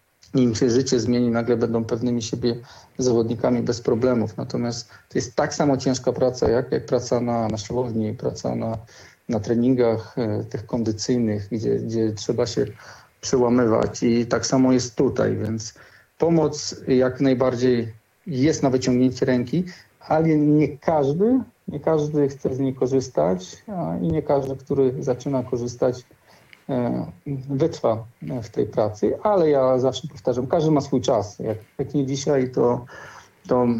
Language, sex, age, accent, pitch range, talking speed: Polish, male, 40-59, native, 115-135 Hz, 145 wpm